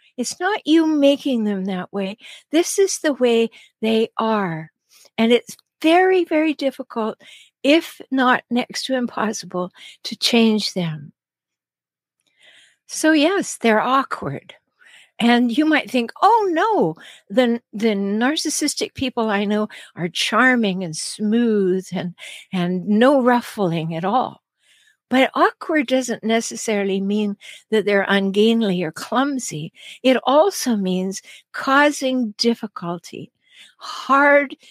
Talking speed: 120 wpm